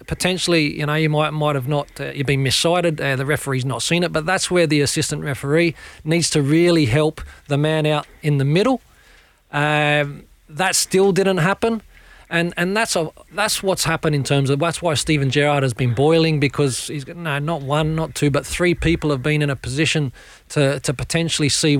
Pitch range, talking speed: 140-170 Hz, 205 wpm